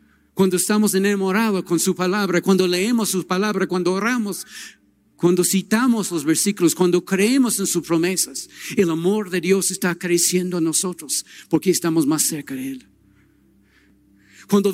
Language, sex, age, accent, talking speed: Spanish, male, 50-69, Mexican, 145 wpm